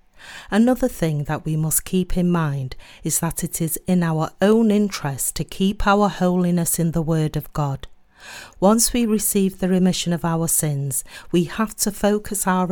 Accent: British